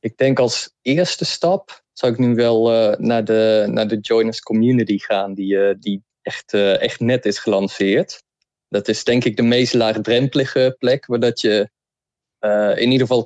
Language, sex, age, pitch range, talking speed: Dutch, male, 20-39, 110-125 Hz, 180 wpm